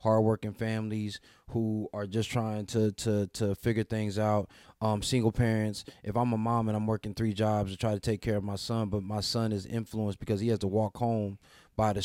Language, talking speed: English, 230 wpm